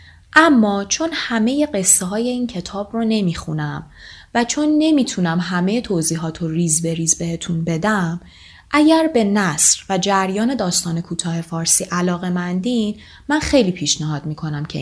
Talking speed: 135 wpm